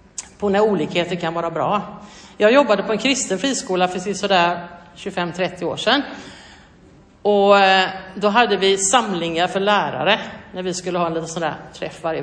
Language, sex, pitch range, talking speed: Swedish, female, 175-220 Hz, 165 wpm